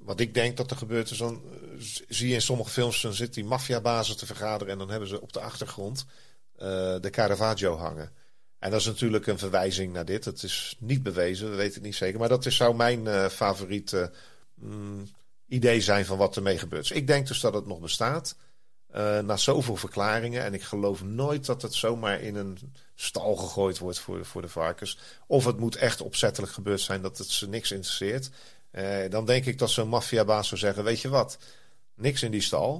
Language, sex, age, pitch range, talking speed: Dutch, male, 40-59, 100-125 Hz, 215 wpm